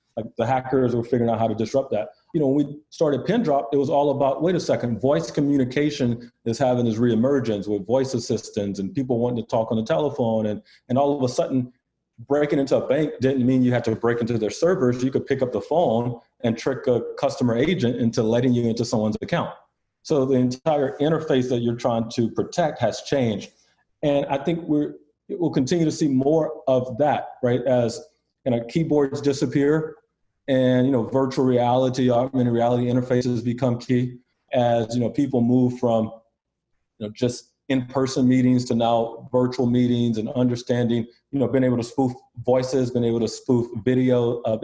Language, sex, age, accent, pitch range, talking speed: English, male, 30-49, American, 120-140 Hz, 195 wpm